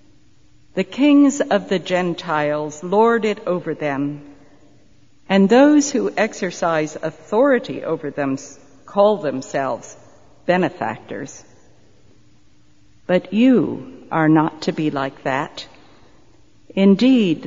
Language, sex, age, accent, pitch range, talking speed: English, female, 60-79, American, 155-220 Hz, 95 wpm